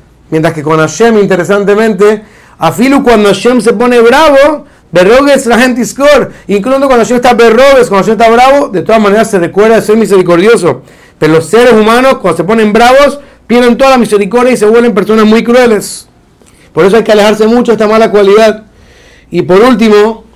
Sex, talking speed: male, 190 wpm